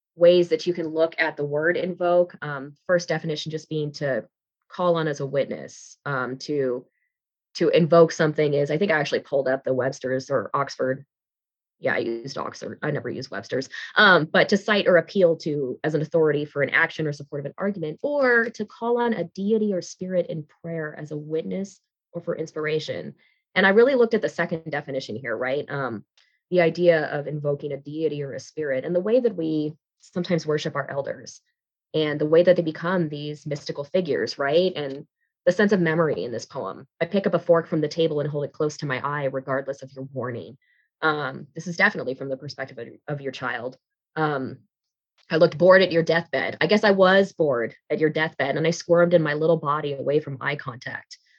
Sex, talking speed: female, 210 wpm